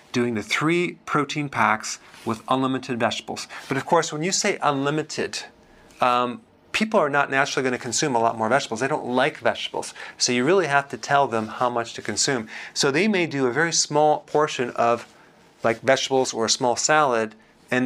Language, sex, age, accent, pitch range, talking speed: English, male, 40-59, American, 120-150 Hz, 195 wpm